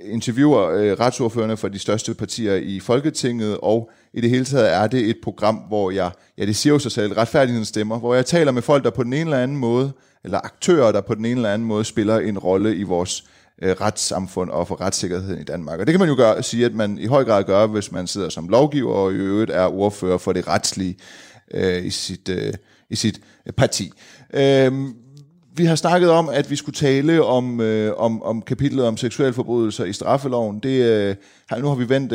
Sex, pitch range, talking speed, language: male, 105-130 Hz, 205 wpm, Danish